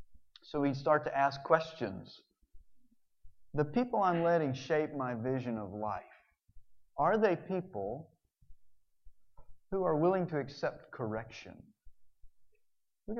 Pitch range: 115-175 Hz